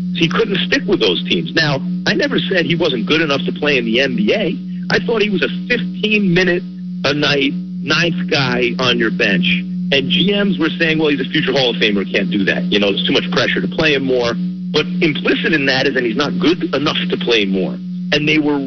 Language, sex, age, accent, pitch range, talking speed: English, male, 50-69, American, 165-185 Hz, 230 wpm